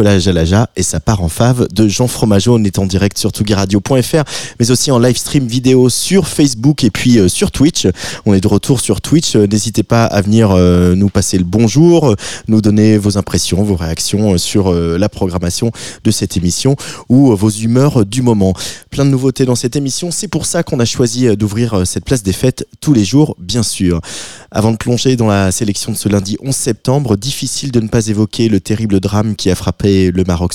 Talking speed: 205 wpm